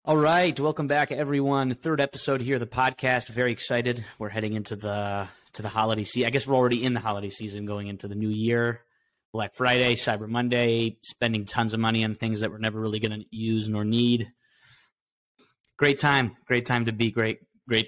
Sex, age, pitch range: male, 20-39, 105-125 Hz